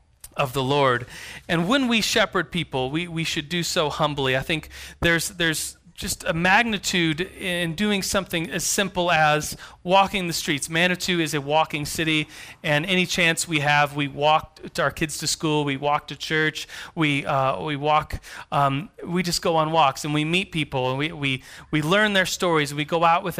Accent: American